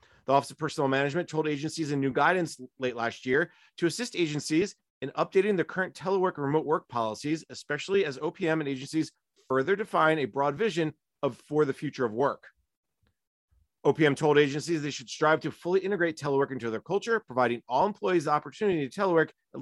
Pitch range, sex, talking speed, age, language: 135-175 Hz, male, 190 wpm, 30-49, English